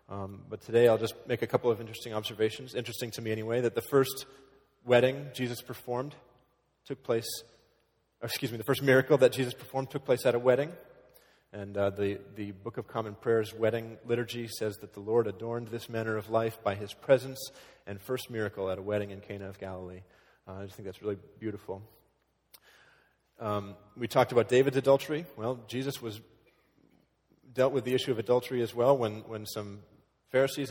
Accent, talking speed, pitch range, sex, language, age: American, 185 wpm, 105-125 Hz, male, English, 30-49